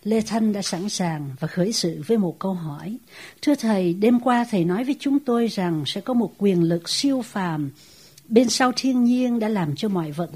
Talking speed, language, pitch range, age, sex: 220 wpm, English, 170-245 Hz, 60-79, female